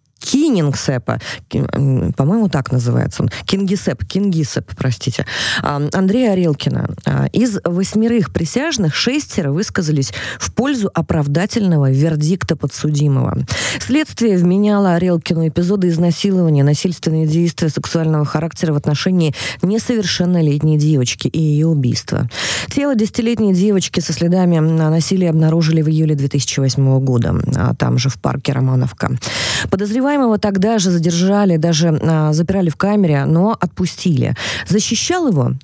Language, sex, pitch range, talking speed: Russian, female, 140-190 Hz, 110 wpm